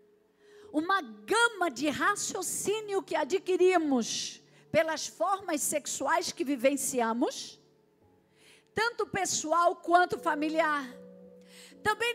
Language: Portuguese